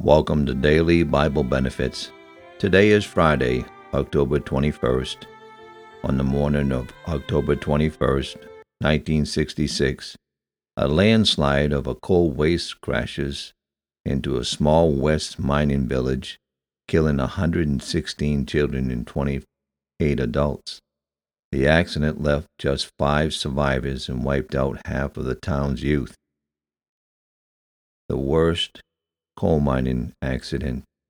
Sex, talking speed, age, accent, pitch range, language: male, 105 wpm, 60-79, American, 65-80 Hz, English